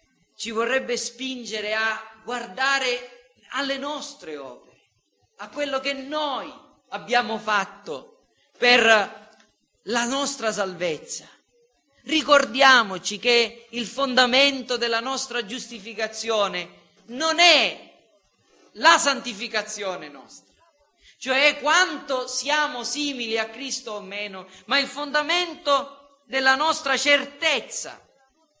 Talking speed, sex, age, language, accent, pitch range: 90 wpm, male, 40-59, Italian, native, 180-275 Hz